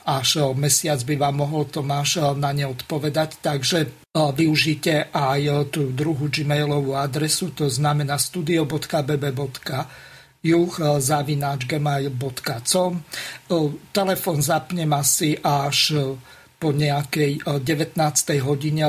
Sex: male